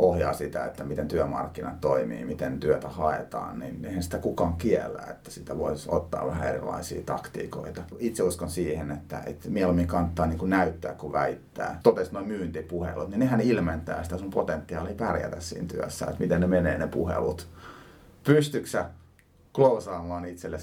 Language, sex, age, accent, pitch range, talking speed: Finnish, male, 30-49, native, 80-90 Hz, 155 wpm